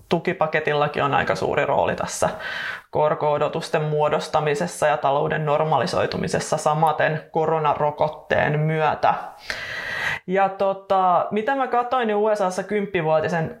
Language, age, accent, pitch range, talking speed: Finnish, 20-39, native, 155-180 Hz, 95 wpm